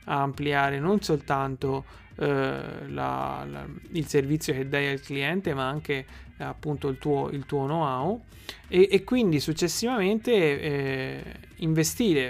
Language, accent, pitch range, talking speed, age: Italian, native, 135-155 Hz, 130 wpm, 30-49